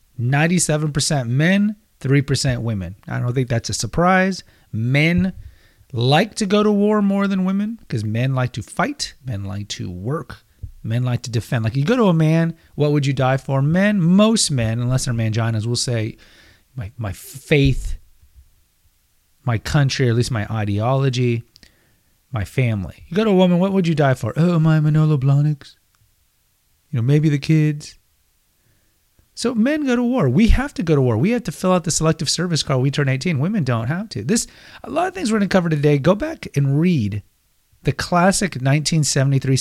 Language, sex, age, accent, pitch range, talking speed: English, male, 30-49, American, 115-165 Hz, 190 wpm